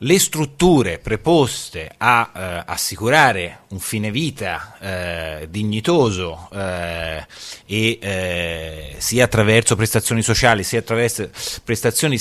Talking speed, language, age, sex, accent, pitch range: 100 wpm, Italian, 30-49, male, native, 95-140 Hz